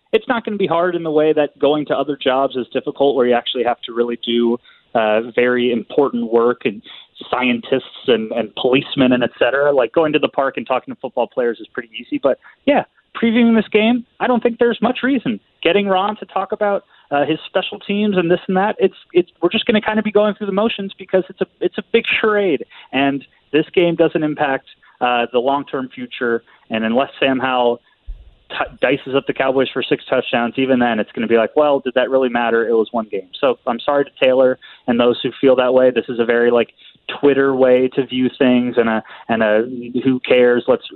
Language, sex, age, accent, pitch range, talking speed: English, male, 30-49, American, 120-155 Hz, 230 wpm